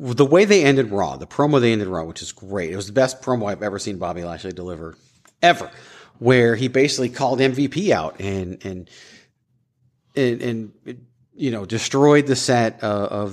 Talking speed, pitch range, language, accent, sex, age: 185 wpm, 100-130 Hz, English, American, male, 30-49